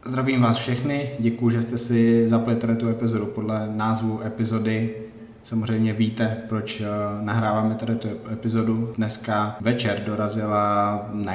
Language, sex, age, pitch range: Czech, male, 20-39, 110-115 Hz